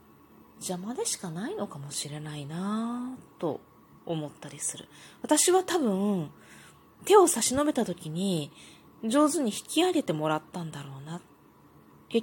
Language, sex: Japanese, female